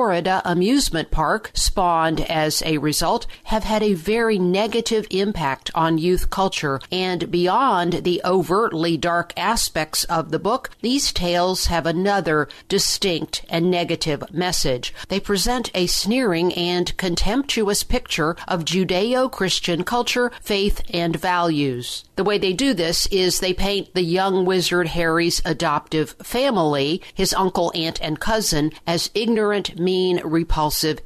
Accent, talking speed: American, 135 wpm